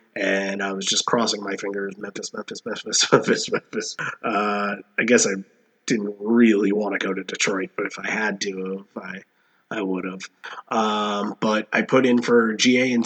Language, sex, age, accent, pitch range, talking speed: English, male, 20-39, American, 100-120 Hz, 190 wpm